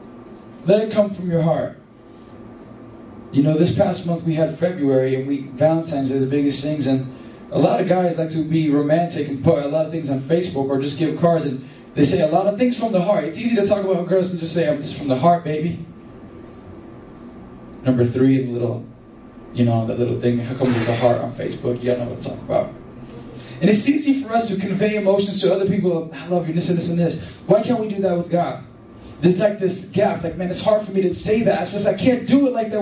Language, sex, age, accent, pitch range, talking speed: English, male, 20-39, American, 130-180 Hz, 250 wpm